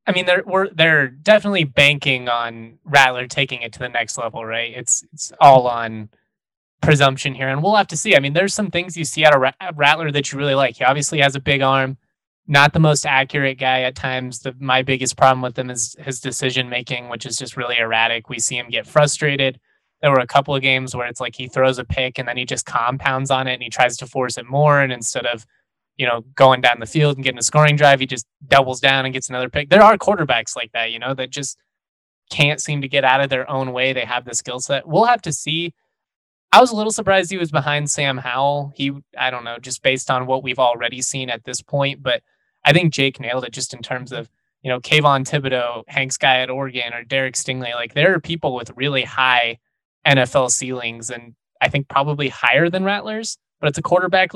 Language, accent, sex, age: English, American, male, 20-39